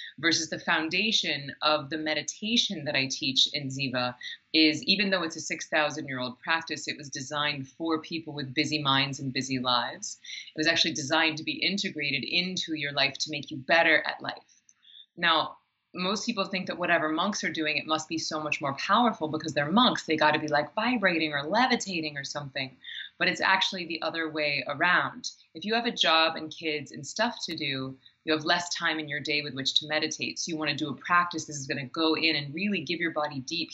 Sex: female